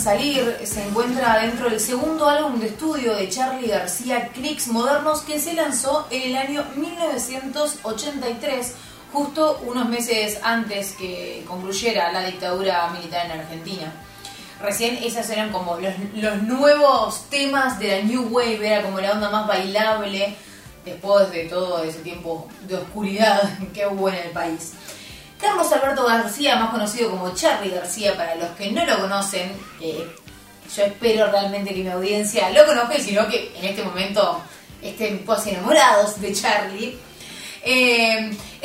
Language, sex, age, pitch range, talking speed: Spanish, female, 20-39, 200-275 Hz, 150 wpm